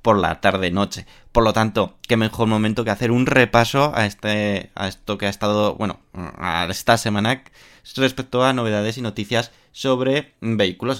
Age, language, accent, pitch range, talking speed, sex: 20-39, Spanish, Spanish, 105-130 Hz, 175 wpm, male